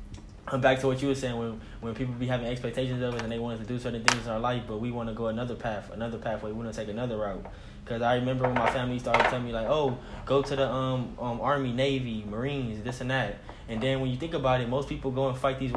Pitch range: 110-130 Hz